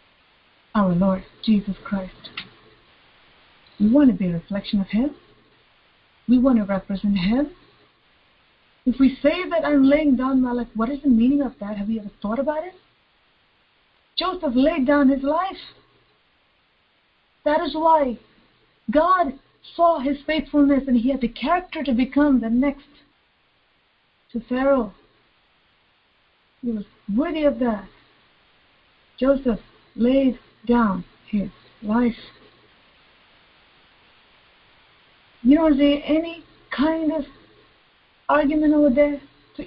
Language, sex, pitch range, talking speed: English, female, 230-295 Hz, 125 wpm